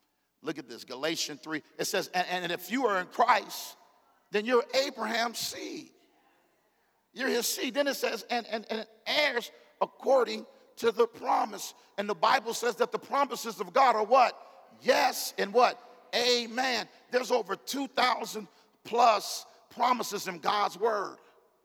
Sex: male